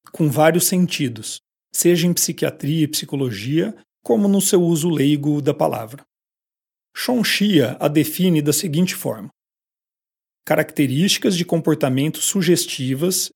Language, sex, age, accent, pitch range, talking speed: Portuguese, male, 40-59, Brazilian, 150-190 Hz, 110 wpm